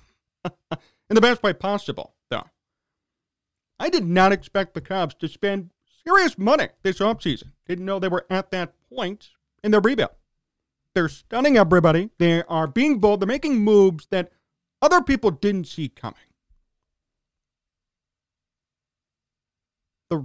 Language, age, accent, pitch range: English, 40-59, American, 145-210 Hz